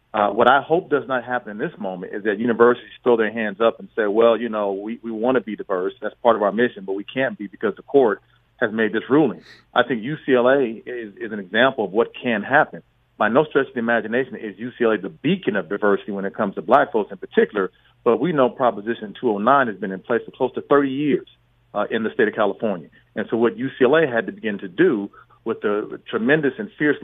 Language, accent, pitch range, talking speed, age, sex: English, American, 110-130 Hz, 240 wpm, 40-59, male